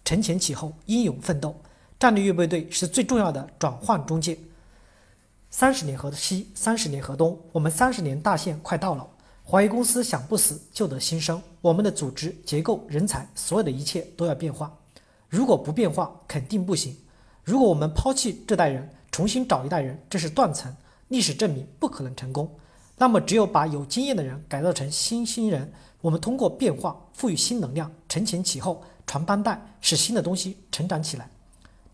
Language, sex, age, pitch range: Chinese, male, 40-59, 145-210 Hz